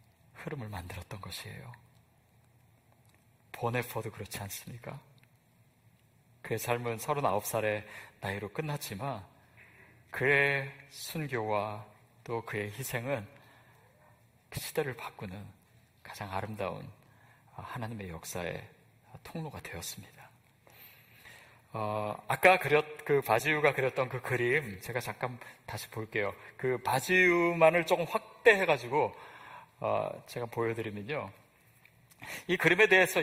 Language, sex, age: Korean, male, 40-59